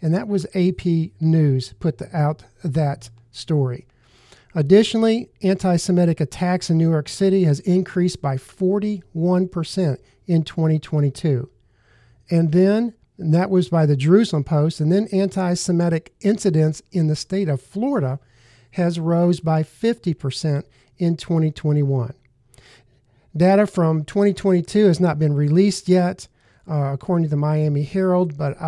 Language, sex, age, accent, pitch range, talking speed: English, male, 50-69, American, 140-180 Hz, 125 wpm